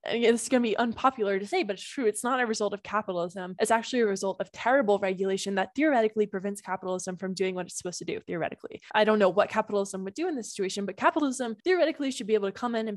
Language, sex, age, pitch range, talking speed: English, female, 10-29, 195-255 Hz, 255 wpm